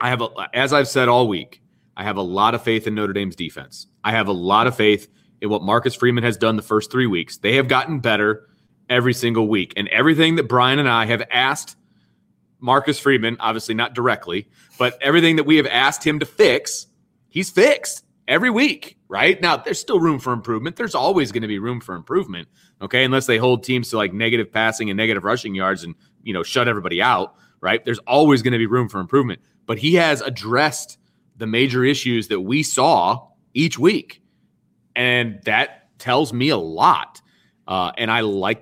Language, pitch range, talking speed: English, 110-135 Hz, 205 wpm